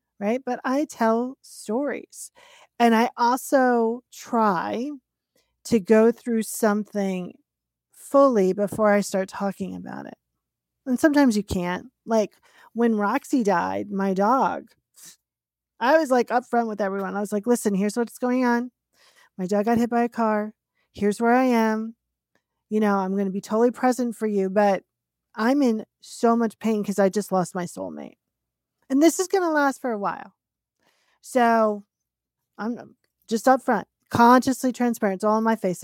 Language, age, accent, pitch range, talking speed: English, 40-59, American, 200-245 Hz, 165 wpm